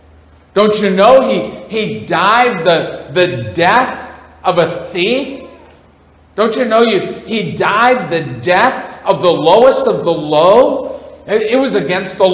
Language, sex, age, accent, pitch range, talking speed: English, male, 50-69, American, 145-210 Hz, 145 wpm